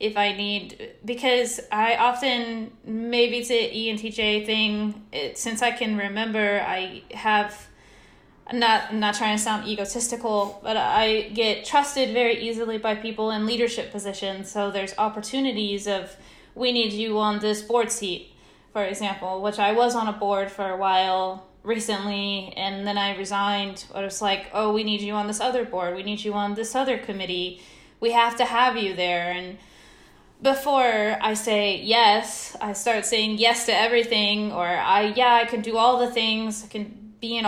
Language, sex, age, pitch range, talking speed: English, female, 20-39, 200-230 Hz, 180 wpm